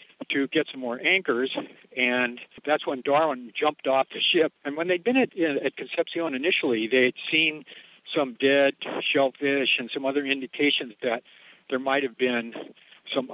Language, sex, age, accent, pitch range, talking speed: English, male, 60-79, American, 125-150 Hz, 160 wpm